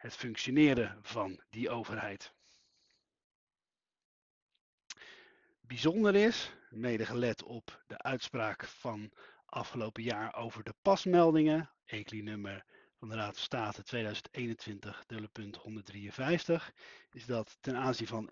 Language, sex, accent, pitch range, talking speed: Dutch, male, Dutch, 105-140 Hz, 95 wpm